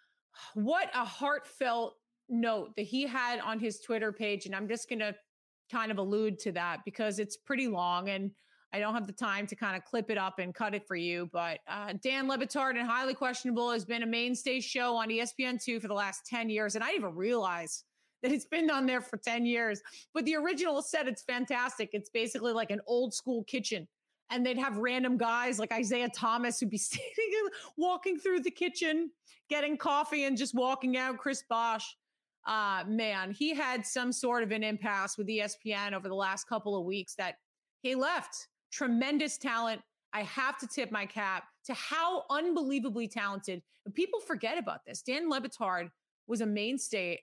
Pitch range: 210-260 Hz